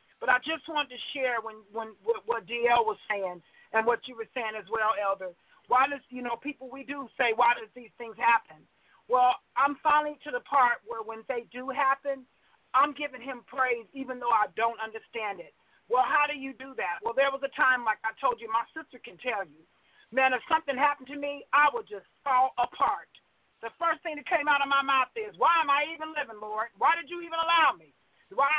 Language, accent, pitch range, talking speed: English, American, 235-305 Hz, 230 wpm